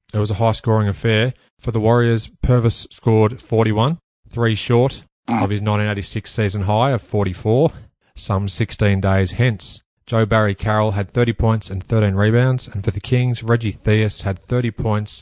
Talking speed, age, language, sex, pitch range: 165 wpm, 30-49, English, male, 105-115 Hz